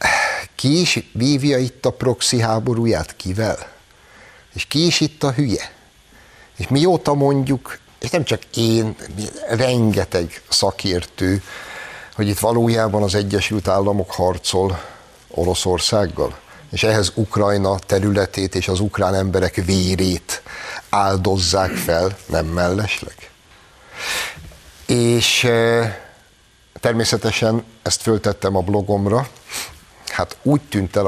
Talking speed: 105 wpm